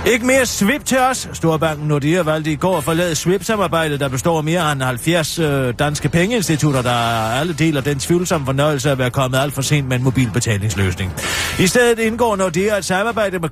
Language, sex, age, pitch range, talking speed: Danish, male, 40-59, 125-170 Hz, 190 wpm